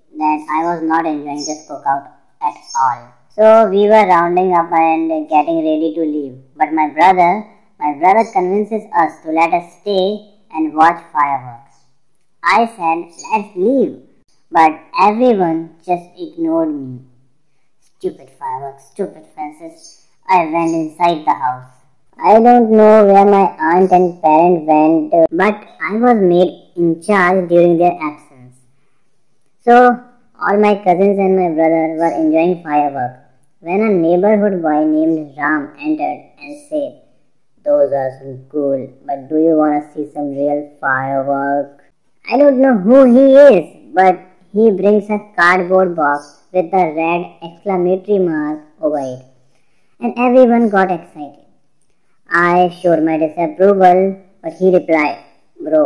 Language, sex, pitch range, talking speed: Hindi, male, 150-205 Hz, 145 wpm